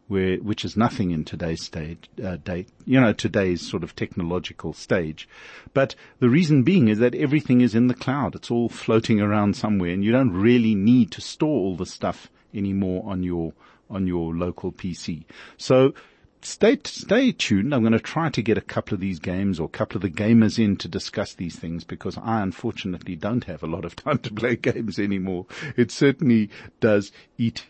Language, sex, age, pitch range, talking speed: English, male, 50-69, 90-120 Hz, 200 wpm